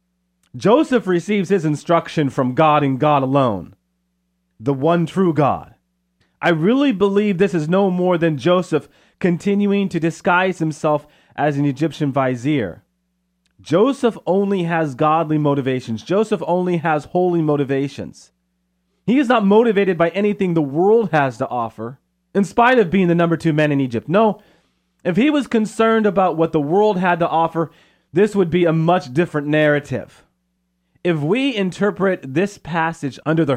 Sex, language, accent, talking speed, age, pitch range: male, English, American, 155 wpm, 30-49, 135-180 Hz